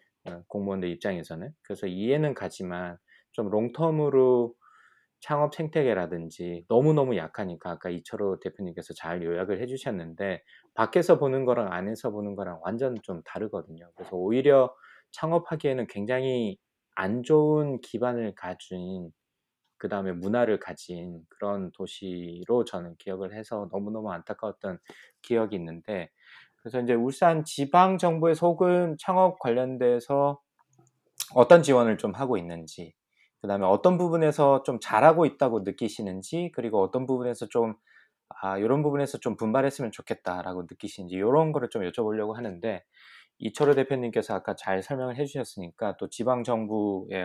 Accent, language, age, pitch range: native, Korean, 20-39, 95-135 Hz